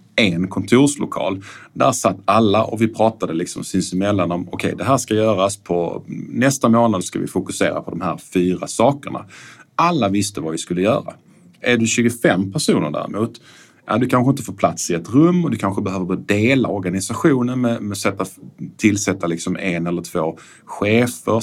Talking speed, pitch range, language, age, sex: 180 wpm, 95-120 Hz, Swedish, 30-49, male